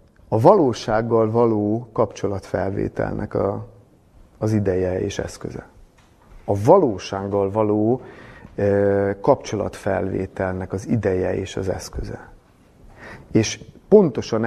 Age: 30-49